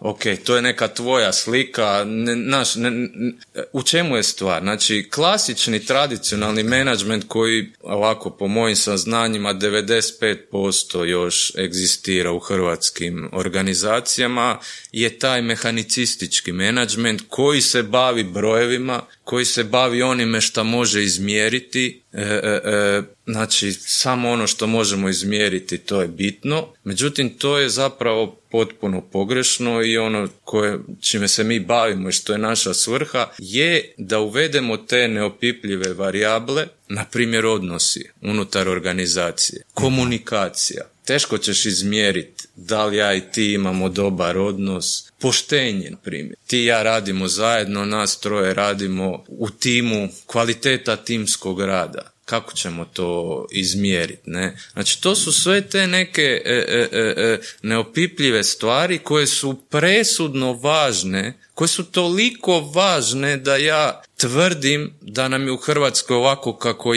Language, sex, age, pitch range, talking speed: Croatian, male, 30-49, 100-125 Hz, 130 wpm